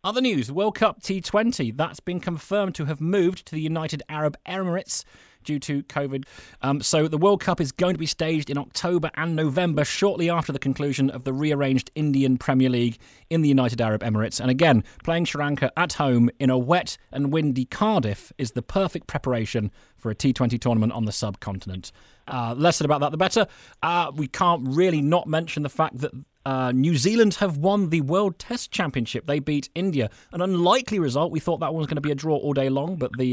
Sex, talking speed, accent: male, 215 wpm, British